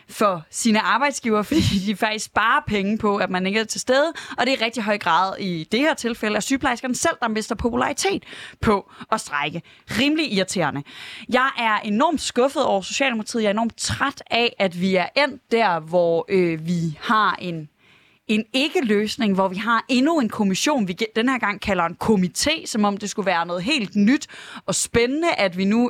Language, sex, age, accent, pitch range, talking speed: Danish, female, 20-39, native, 195-255 Hz, 195 wpm